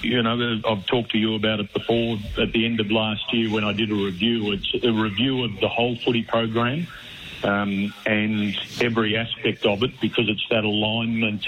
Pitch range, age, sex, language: 105-115 Hz, 50-69, male, English